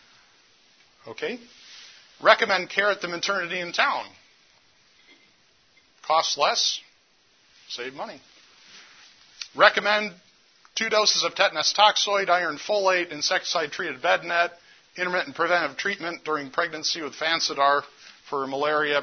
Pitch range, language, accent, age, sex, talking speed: 140-175 Hz, English, American, 50-69, male, 100 wpm